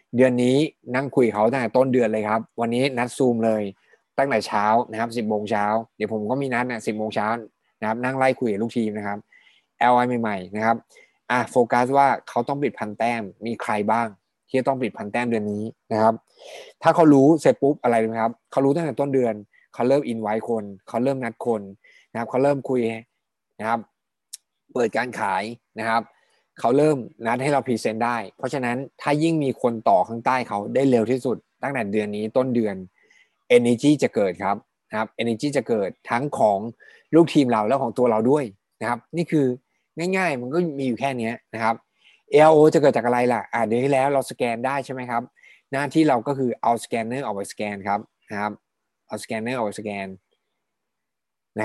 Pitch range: 110-135 Hz